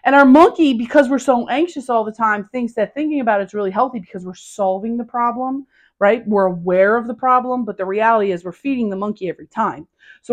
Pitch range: 185-255 Hz